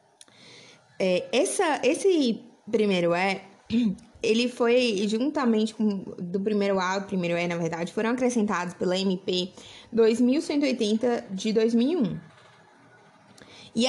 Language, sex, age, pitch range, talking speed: Portuguese, female, 20-39, 190-235 Hz, 100 wpm